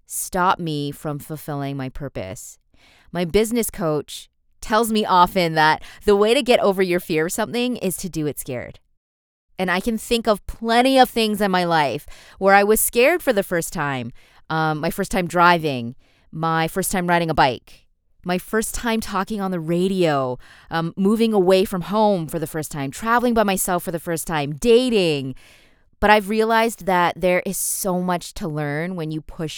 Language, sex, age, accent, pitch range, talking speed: English, female, 20-39, American, 145-195 Hz, 190 wpm